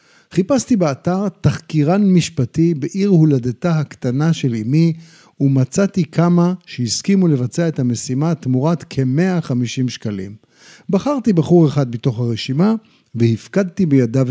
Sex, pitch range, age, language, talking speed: male, 130-190 Hz, 50-69, Hebrew, 110 wpm